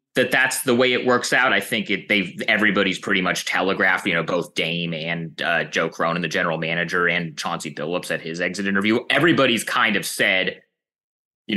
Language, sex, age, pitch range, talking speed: English, male, 30-49, 90-130 Hz, 195 wpm